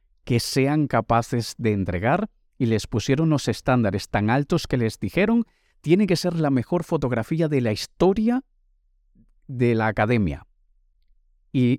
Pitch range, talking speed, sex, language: 110-155 Hz, 145 wpm, male, Spanish